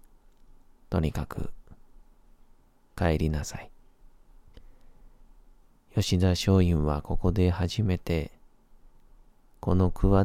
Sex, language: male, Japanese